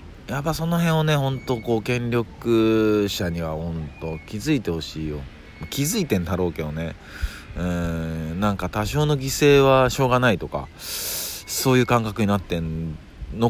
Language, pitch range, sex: Japanese, 85-110 Hz, male